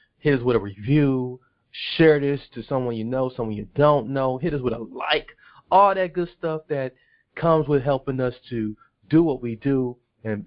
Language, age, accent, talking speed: English, 30-49, American, 200 wpm